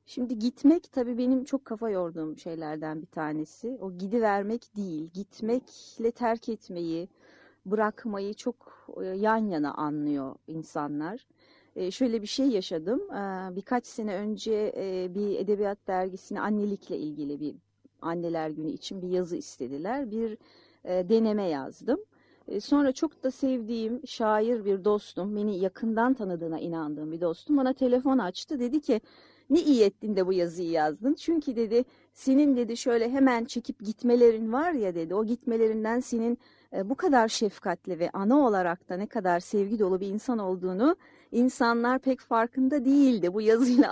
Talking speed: 150 wpm